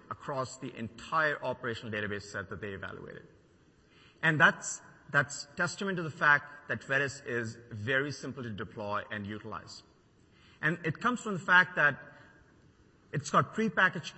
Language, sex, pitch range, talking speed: English, male, 115-145 Hz, 150 wpm